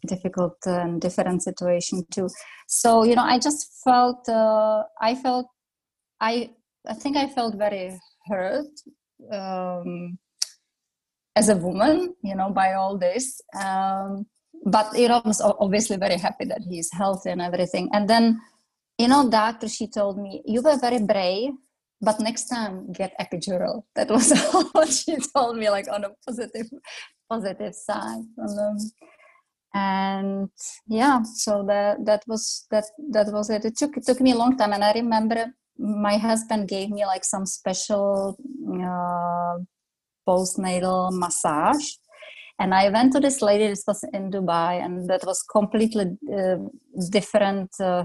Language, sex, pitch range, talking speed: English, female, 190-235 Hz, 150 wpm